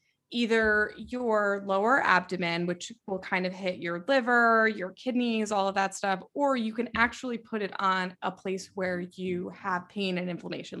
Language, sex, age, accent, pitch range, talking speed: English, female, 20-39, American, 185-220 Hz, 180 wpm